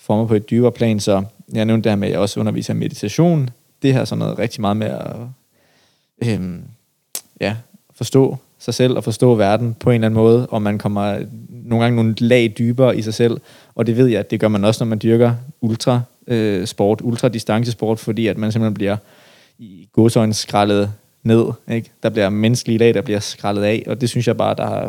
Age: 20-39